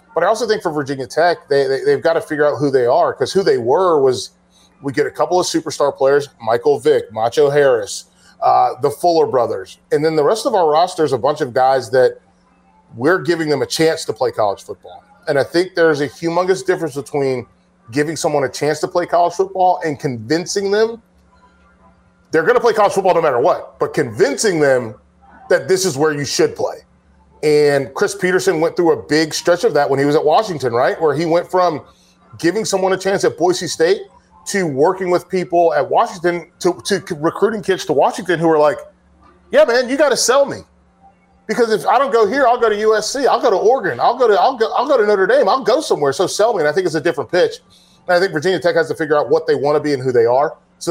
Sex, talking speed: male, 240 wpm